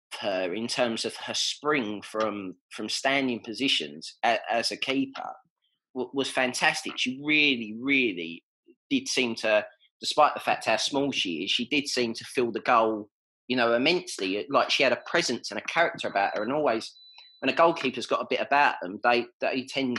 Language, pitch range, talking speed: English, 110-140 Hz, 185 wpm